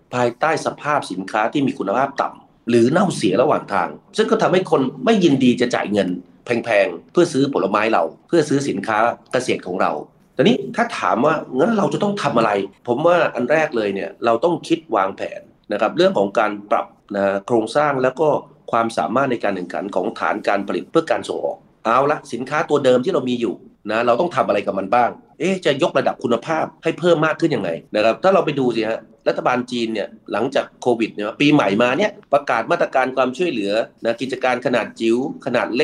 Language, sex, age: Thai, male, 30-49